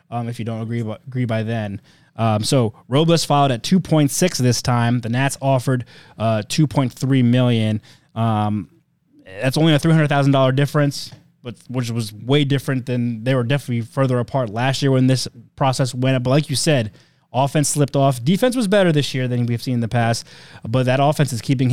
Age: 20-39